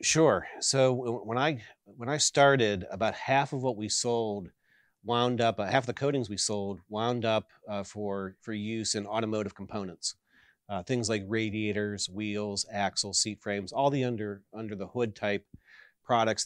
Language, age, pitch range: English, 40-59, 100-115 Hz